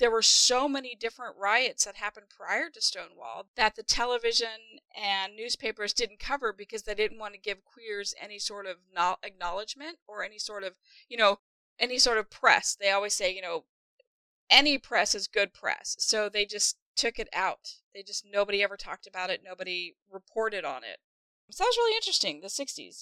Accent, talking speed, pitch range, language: American, 190 wpm, 200-255 Hz, English